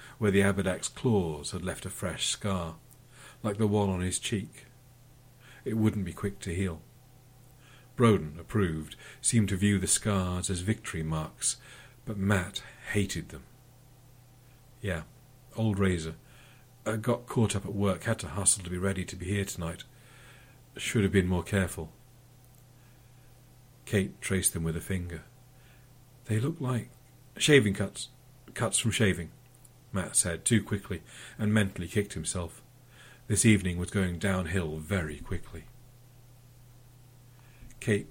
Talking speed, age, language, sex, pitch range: 140 wpm, 50-69, English, male, 95-125 Hz